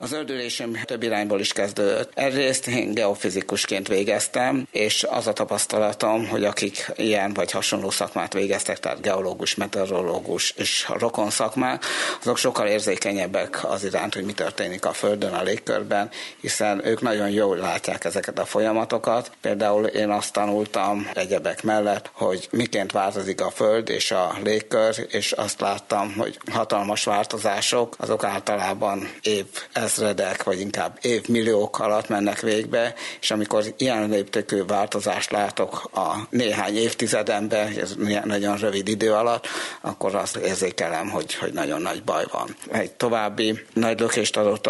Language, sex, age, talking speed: Hungarian, male, 60-79, 140 wpm